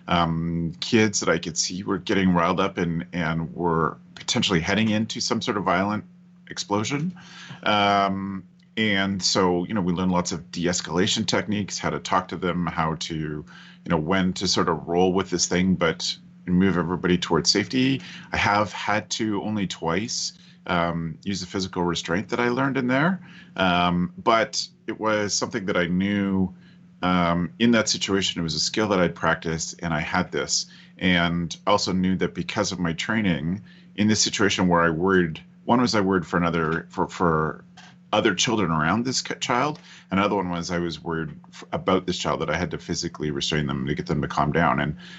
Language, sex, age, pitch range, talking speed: English, male, 30-49, 85-105 Hz, 190 wpm